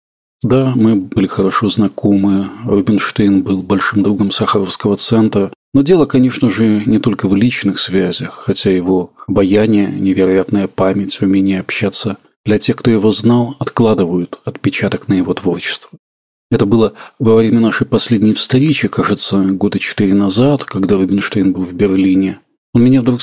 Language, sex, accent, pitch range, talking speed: Russian, male, native, 95-120 Hz, 145 wpm